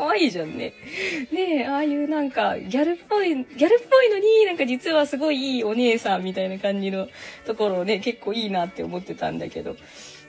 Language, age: Japanese, 20-39